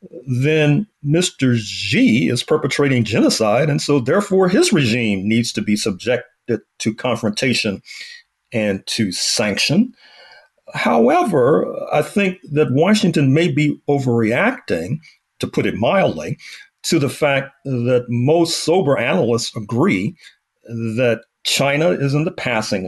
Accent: American